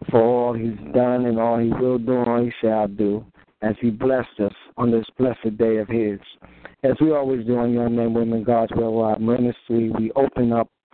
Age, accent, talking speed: 60-79, American, 210 wpm